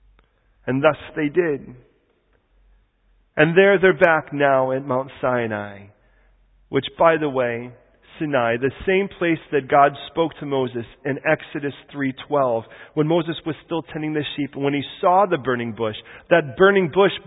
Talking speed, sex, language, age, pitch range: 155 wpm, male, English, 40-59, 125-180 Hz